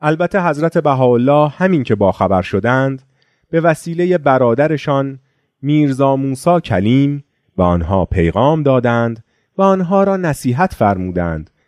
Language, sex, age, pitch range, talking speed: Persian, male, 30-49, 100-145 Hz, 115 wpm